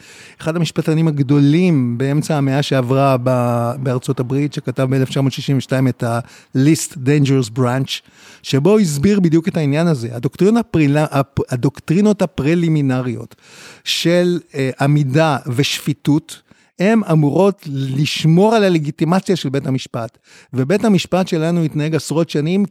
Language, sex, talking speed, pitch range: Hebrew, male, 105 wpm, 145-200 Hz